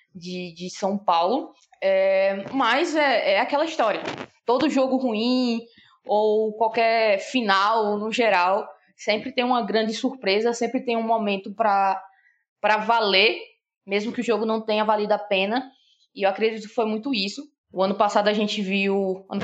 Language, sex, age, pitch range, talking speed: Portuguese, female, 20-39, 200-255 Hz, 165 wpm